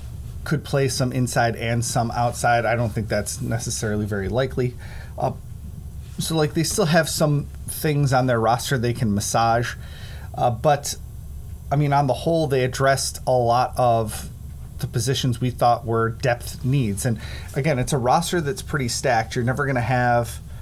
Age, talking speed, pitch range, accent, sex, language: 30-49, 175 wpm, 110-135 Hz, American, male, English